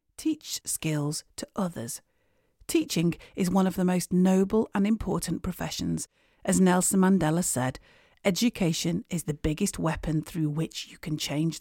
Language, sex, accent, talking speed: English, female, British, 145 wpm